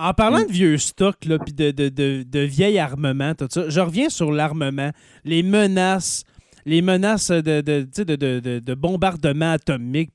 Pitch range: 145-185 Hz